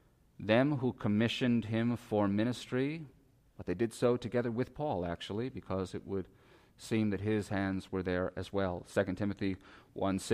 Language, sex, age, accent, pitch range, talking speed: English, male, 40-59, American, 105-130 Hz, 165 wpm